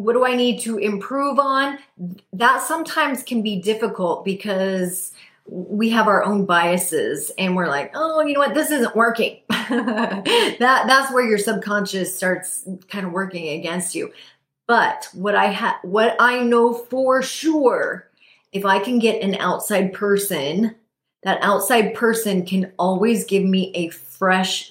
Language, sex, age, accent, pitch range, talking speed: English, female, 30-49, American, 185-250 Hz, 155 wpm